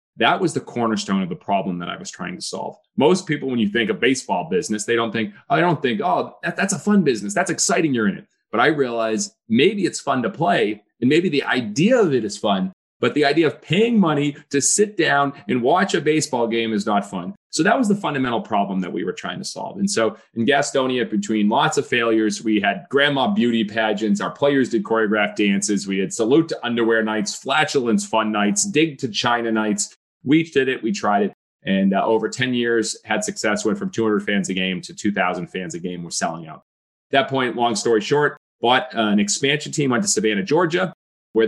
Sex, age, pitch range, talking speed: male, 30-49, 105-135 Hz, 225 wpm